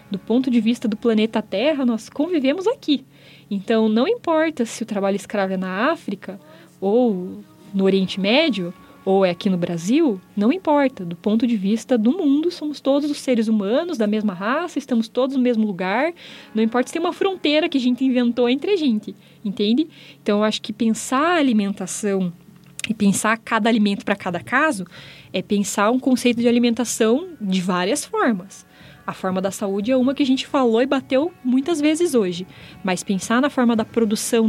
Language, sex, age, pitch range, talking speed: Portuguese, female, 20-39, 200-265 Hz, 190 wpm